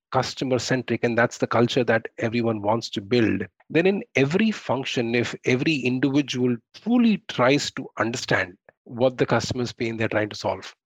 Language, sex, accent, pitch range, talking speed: English, male, Indian, 115-140 Hz, 160 wpm